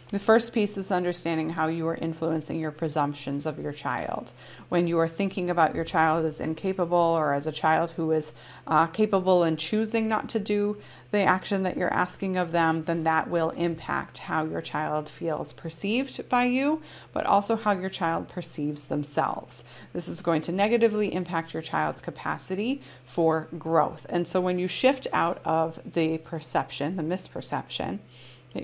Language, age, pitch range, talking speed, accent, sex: English, 30-49, 155-180 Hz, 175 wpm, American, female